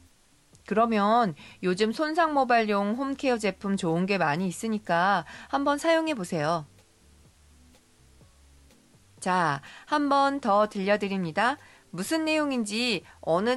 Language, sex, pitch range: Korean, female, 145-245 Hz